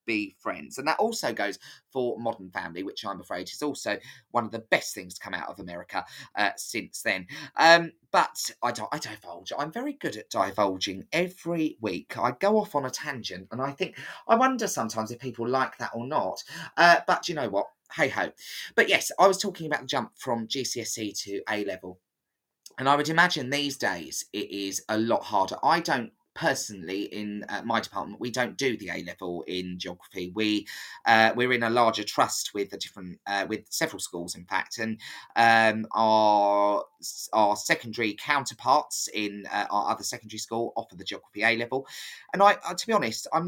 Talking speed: 195 wpm